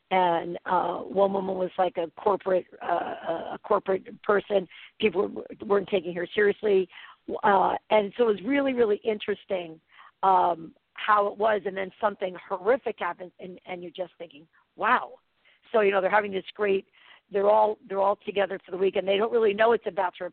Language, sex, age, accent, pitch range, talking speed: English, female, 50-69, American, 175-205 Hz, 190 wpm